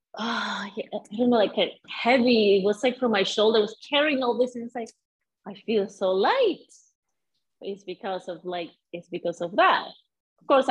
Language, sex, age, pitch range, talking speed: English, female, 30-49, 195-260 Hz, 185 wpm